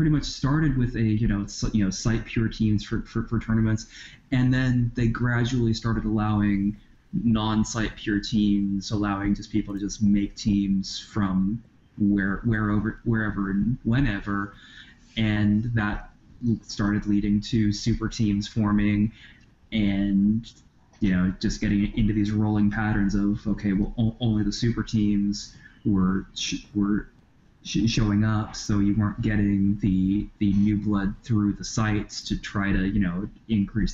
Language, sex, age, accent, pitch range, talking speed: English, male, 20-39, American, 100-115 Hz, 150 wpm